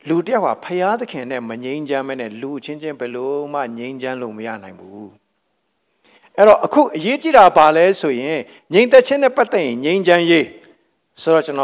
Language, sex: English, male